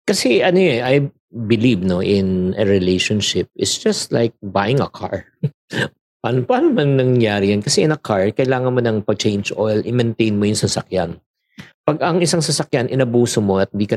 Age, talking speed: 50-69, 180 wpm